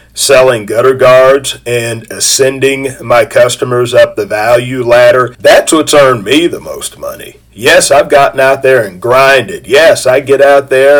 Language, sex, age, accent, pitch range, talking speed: English, male, 50-69, American, 115-140 Hz, 165 wpm